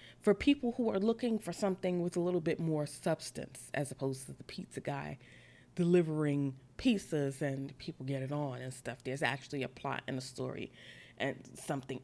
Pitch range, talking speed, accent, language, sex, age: 145-205 Hz, 185 wpm, American, English, female, 20-39